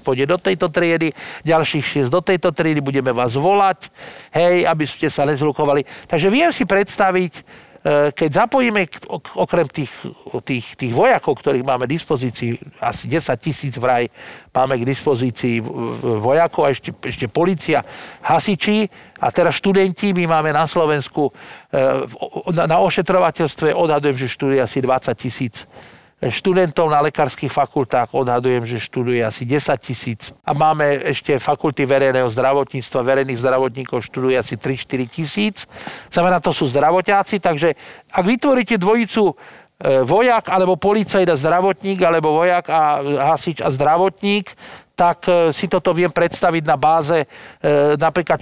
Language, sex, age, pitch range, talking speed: Slovak, male, 50-69, 135-185 Hz, 135 wpm